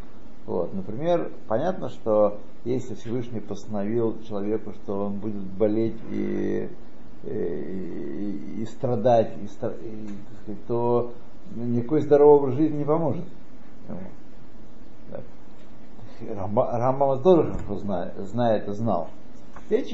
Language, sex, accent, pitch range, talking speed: Russian, male, native, 110-155 Hz, 95 wpm